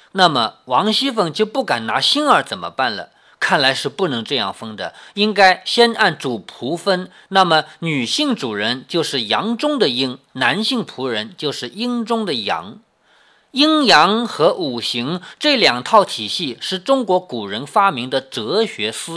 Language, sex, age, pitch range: Chinese, male, 50-69, 170-240 Hz